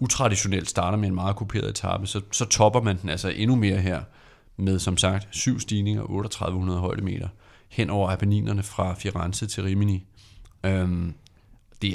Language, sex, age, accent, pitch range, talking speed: Danish, male, 30-49, native, 95-110 Hz, 165 wpm